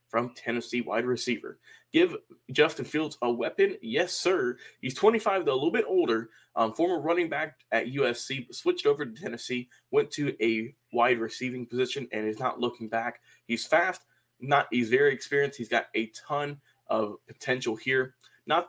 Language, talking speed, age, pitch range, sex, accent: English, 170 wpm, 20-39, 115-170 Hz, male, American